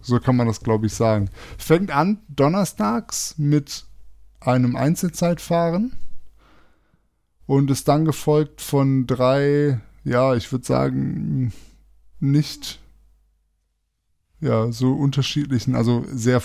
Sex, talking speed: male, 105 wpm